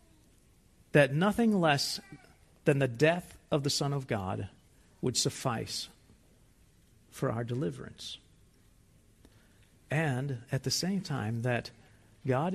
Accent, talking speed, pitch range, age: American, 110 wpm, 110-140 Hz, 50-69